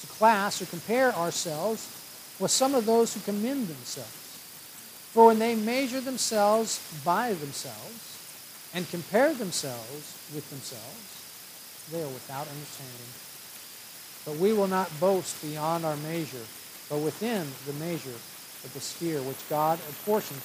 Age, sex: 60-79, male